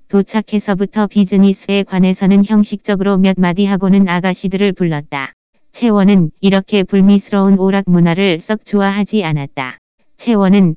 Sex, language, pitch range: female, Korean, 175-200 Hz